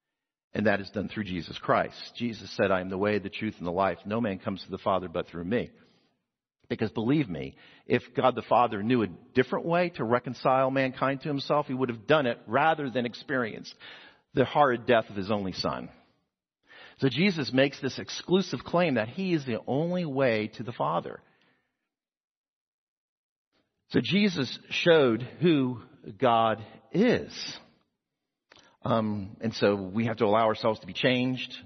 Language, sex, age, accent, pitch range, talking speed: English, male, 50-69, American, 110-150 Hz, 175 wpm